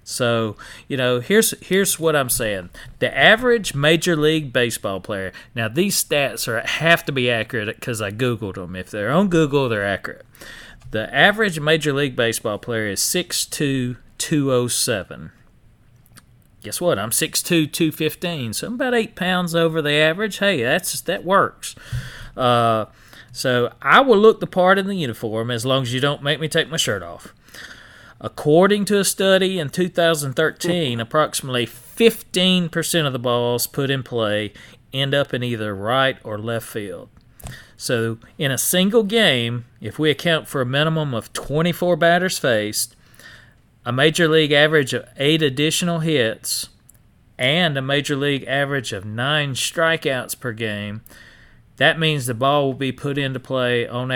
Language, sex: English, male